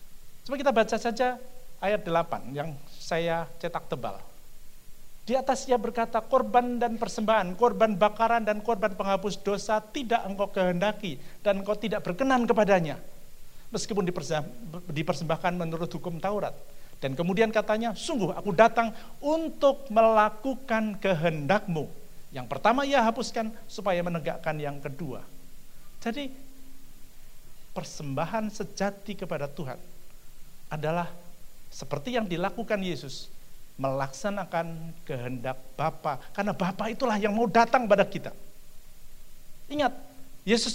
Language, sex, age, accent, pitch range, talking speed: Indonesian, male, 50-69, native, 165-230 Hz, 110 wpm